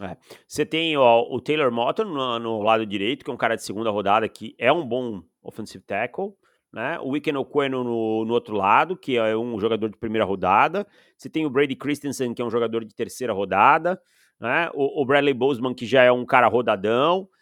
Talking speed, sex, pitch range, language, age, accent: 215 wpm, male, 125-175 Hz, Portuguese, 30-49, Brazilian